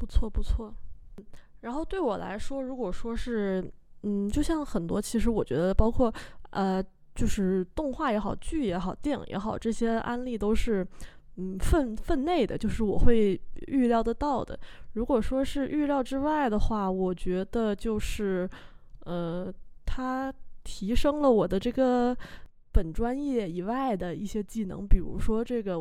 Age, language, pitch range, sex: 20-39, Chinese, 190-245 Hz, female